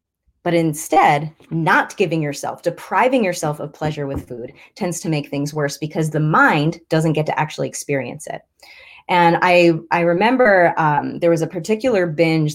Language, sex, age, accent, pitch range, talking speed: English, female, 30-49, American, 145-190 Hz, 165 wpm